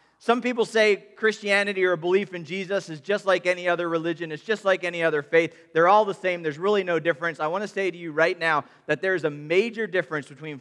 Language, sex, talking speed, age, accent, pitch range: English, male, 240 wpm, 40-59, American, 155-220 Hz